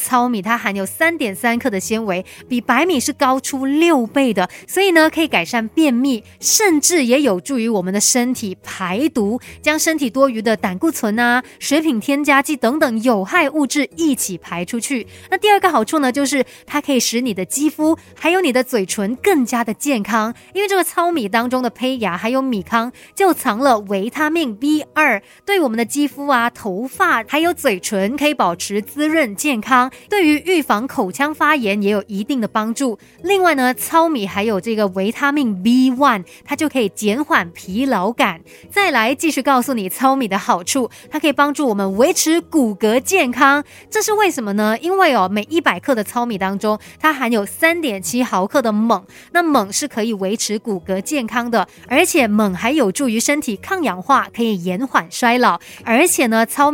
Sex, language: female, Chinese